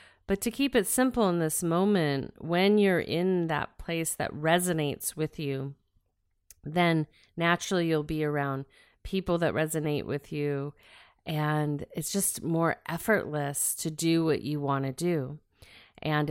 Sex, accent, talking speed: female, American, 145 wpm